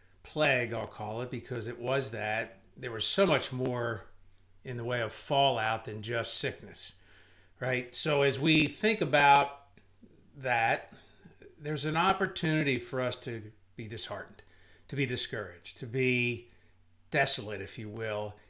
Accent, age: American, 50-69